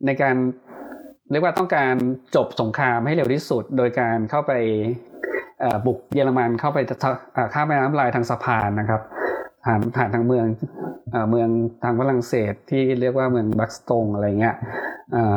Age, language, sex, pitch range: 20-39, Thai, male, 115-135 Hz